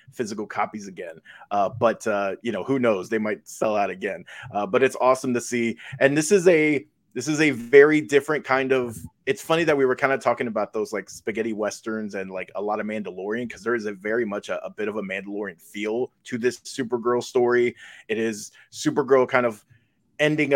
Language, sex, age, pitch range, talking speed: English, male, 20-39, 110-145 Hz, 215 wpm